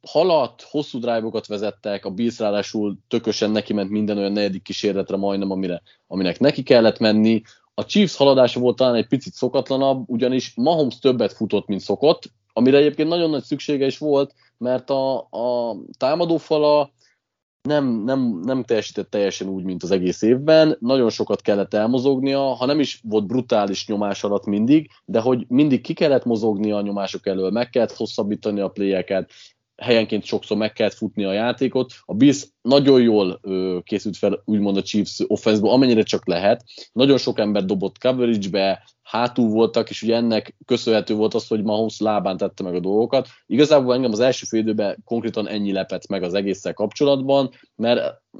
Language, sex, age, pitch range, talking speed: Hungarian, male, 30-49, 100-130 Hz, 165 wpm